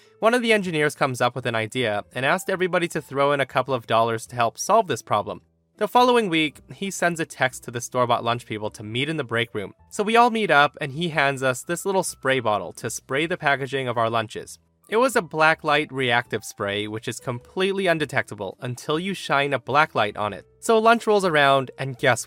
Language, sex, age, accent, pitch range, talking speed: English, male, 20-39, American, 120-175 Hz, 235 wpm